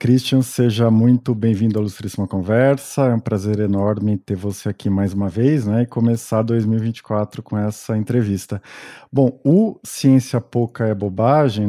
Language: Portuguese